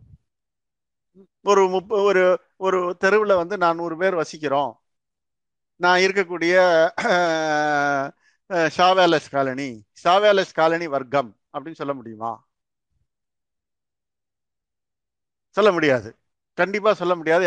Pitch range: 150-195 Hz